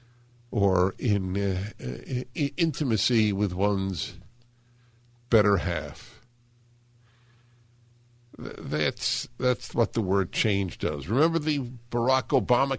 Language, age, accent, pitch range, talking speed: English, 50-69, American, 100-120 Hz, 95 wpm